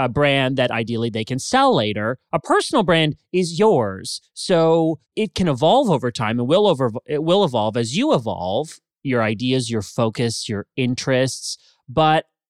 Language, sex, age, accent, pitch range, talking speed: English, male, 30-49, American, 115-160 Hz, 170 wpm